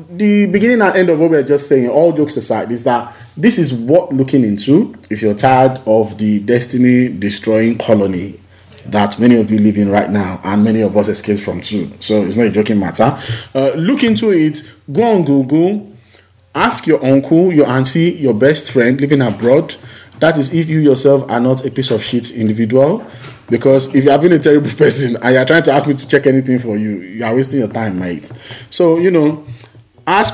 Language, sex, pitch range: English, male, 110-145 Hz